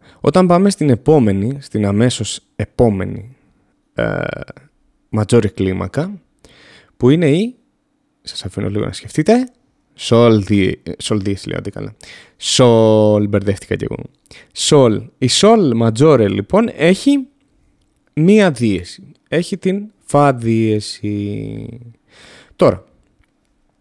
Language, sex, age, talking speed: Greek, male, 20-39, 100 wpm